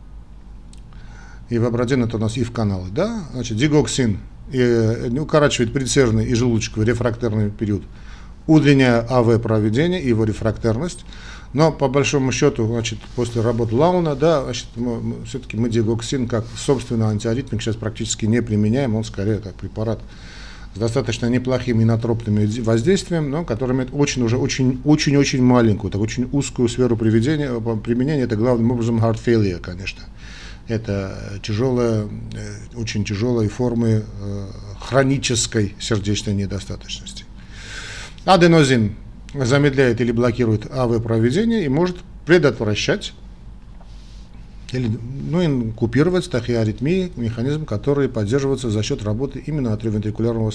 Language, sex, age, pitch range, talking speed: Russian, male, 50-69, 110-135 Hz, 120 wpm